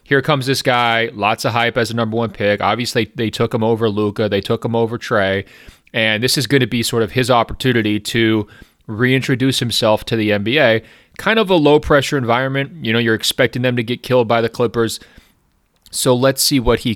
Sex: male